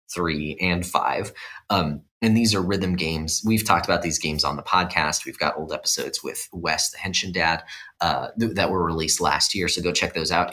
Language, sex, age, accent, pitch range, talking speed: English, male, 30-49, American, 85-110 Hz, 210 wpm